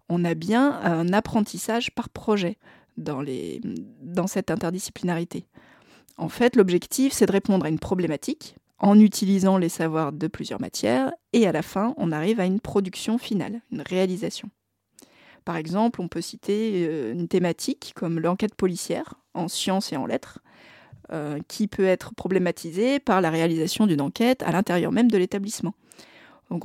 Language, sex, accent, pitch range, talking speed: French, female, French, 170-215 Hz, 160 wpm